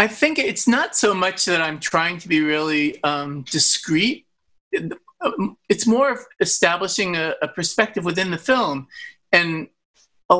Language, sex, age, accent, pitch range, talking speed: English, male, 40-59, American, 155-195 Hz, 150 wpm